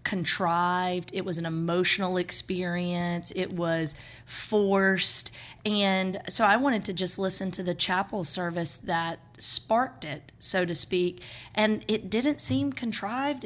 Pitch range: 175-215 Hz